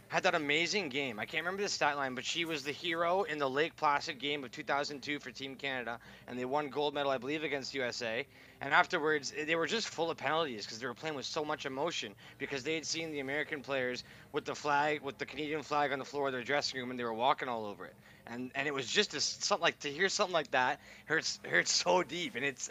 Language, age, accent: English, 20-39, American